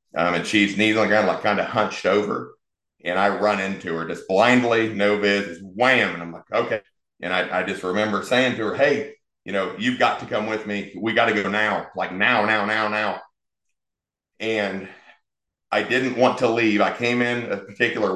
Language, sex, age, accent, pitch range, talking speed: English, male, 40-59, American, 95-115 Hz, 210 wpm